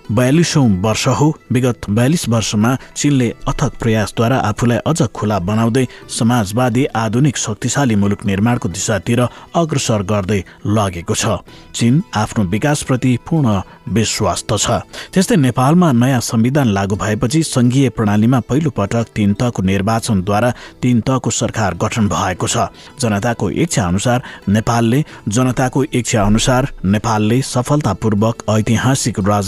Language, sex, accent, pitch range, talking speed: English, male, Indian, 105-130 Hz, 95 wpm